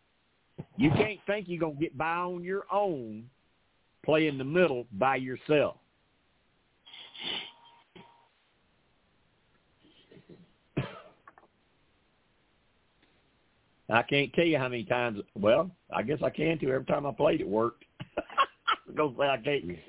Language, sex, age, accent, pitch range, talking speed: English, male, 60-79, American, 130-165 Hz, 120 wpm